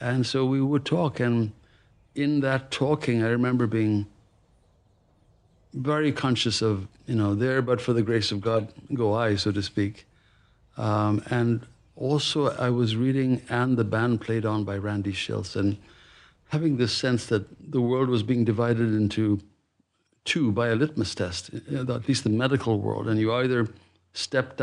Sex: male